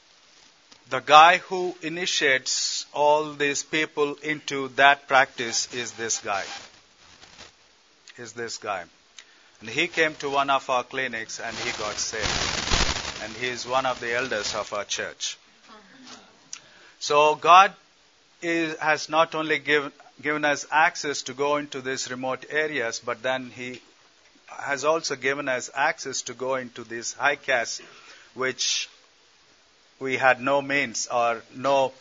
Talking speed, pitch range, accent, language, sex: 140 wpm, 125-150 Hz, Indian, English, male